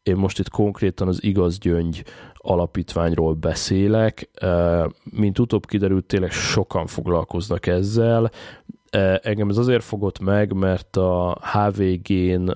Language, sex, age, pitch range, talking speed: Hungarian, male, 20-39, 85-100 Hz, 110 wpm